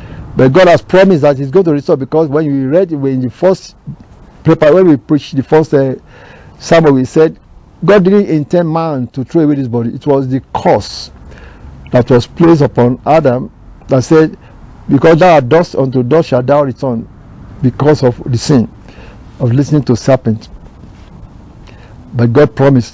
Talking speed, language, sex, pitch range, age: 175 wpm, English, male, 120-155 Hz, 50-69